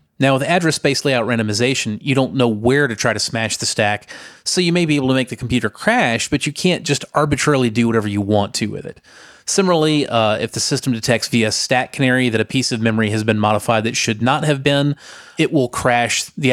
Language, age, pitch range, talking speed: English, 30-49, 110-130 Hz, 230 wpm